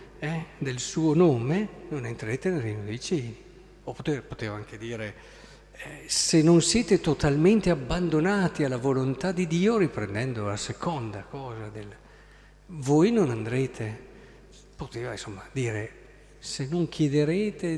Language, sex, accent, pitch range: Italian, male, native, 120-180 Hz